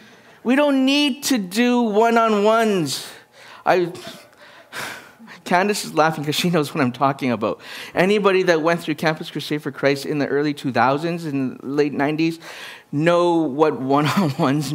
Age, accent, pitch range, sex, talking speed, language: 50-69, American, 125-210 Hz, male, 140 wpm, English